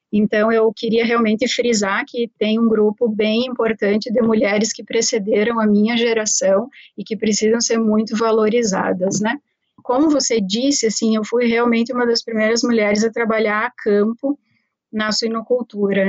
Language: Portuguese